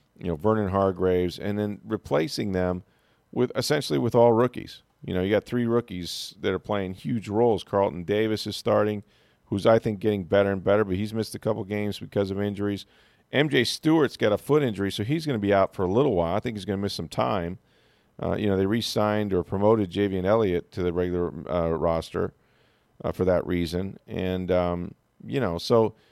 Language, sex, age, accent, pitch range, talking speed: English, male, 40-59, American, 100-120 Hz, 205 wpm